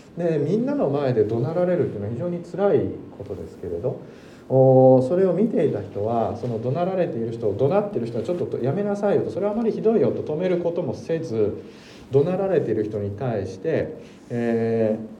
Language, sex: Japanese, male